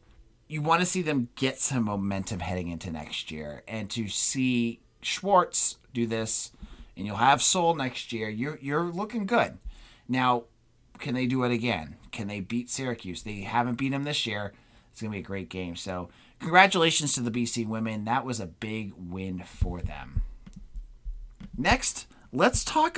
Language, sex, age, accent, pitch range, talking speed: English, male, 30-49, American, 100-135 Hz, 170 wpm